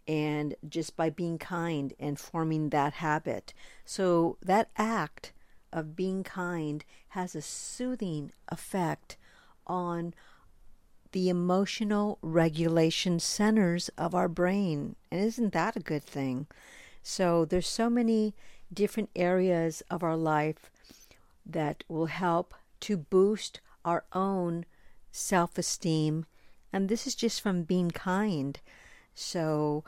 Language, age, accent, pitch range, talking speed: English, 50-69, American, 165-205 Hz, 115 wpm